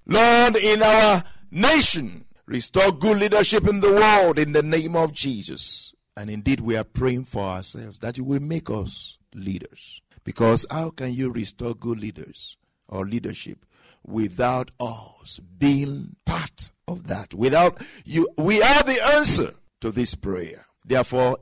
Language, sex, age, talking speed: English, male, 60-79, 150 wpm